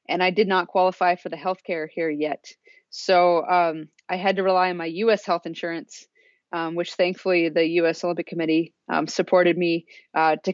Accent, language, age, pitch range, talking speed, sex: American, English, 20-39, 175-205 Hz, 190 wpm, female